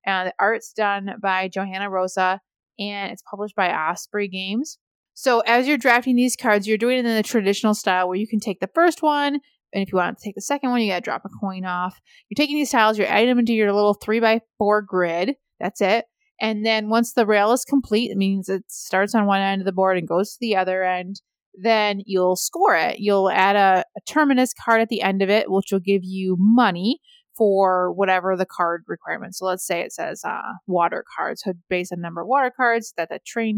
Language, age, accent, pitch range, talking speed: English, 20-39, American, 185-225 Hz, 230 wpm